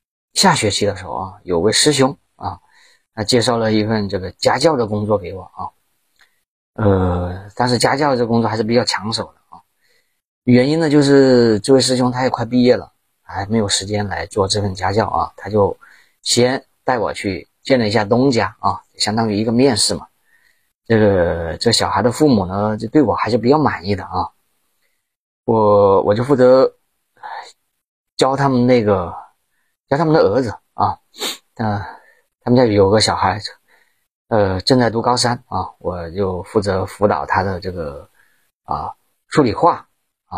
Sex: male